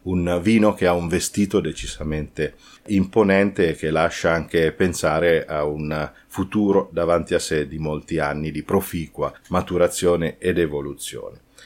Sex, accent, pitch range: male, native, 85-105 Hz